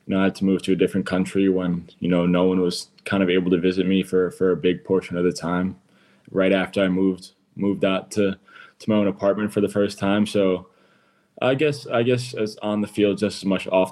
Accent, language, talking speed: American, English, 250 wpm